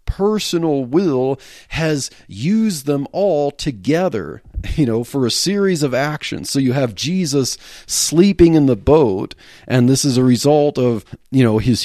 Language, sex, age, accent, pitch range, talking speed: English, male, 40-59, American, 120-155 Hz, 155 wpm